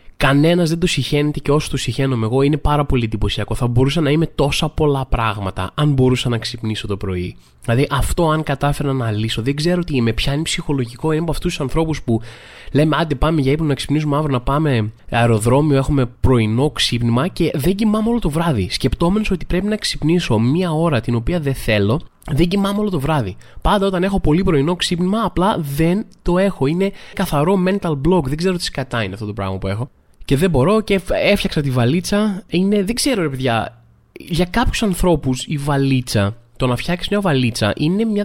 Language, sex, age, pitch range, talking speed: Greek, male, 20-39, 130-185 Hz, 200 wpm